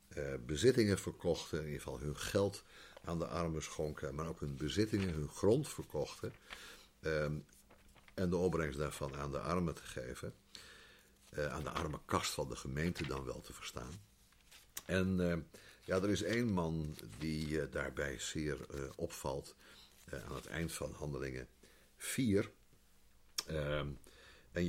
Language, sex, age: Dutch, male, 50-69